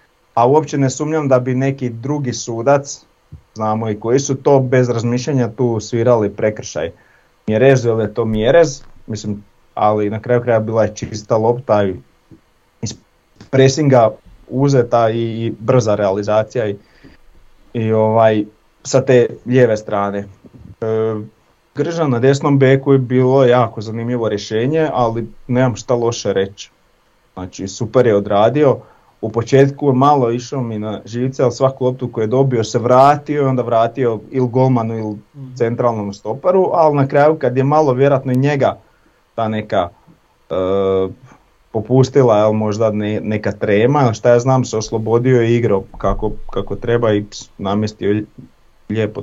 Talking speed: 145 wpm